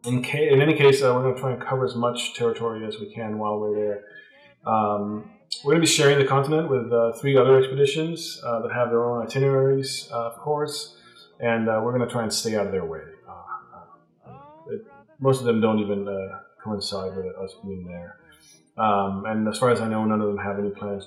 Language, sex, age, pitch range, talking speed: English, male, 30-49, 115-145 Hz, 230 wpm